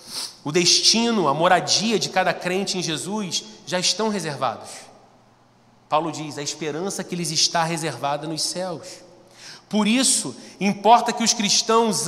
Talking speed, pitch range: 140 wpm, 210-275 Hz